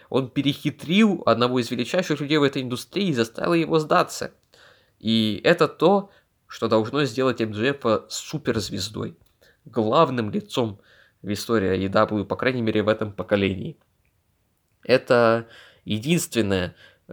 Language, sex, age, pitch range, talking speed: Russian, male, 20-39, 110-150 Hz, 120 wpm